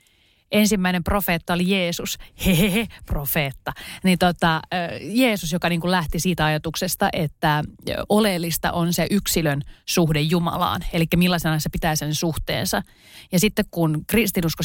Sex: female